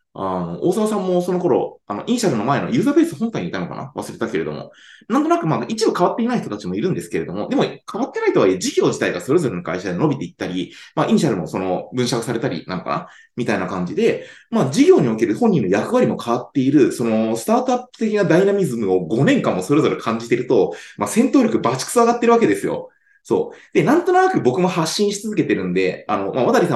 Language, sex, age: Japanese, male, 20-39